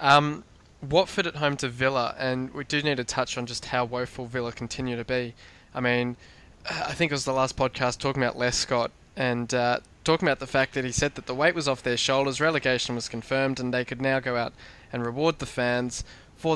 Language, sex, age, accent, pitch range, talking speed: English, male, 20-39, Australian, 120-135 Hz, 230 wpm